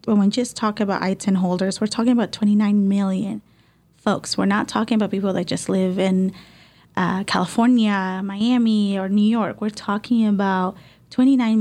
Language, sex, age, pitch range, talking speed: English, female, 20-39, 185-215 Hz, 165 wpm